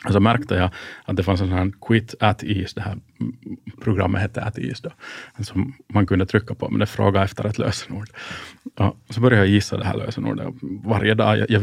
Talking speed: 210 wpm